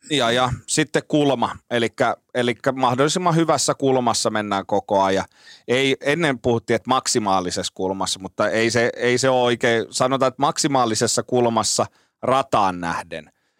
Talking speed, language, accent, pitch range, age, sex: 120 wpm, Finnish, native, 105-135 Hz, 30-49, male